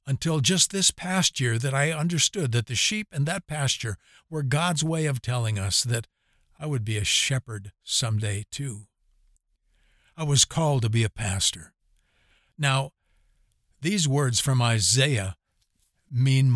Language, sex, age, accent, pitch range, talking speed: English, male, 60-79, American, 105-150 Hz, 150 wpm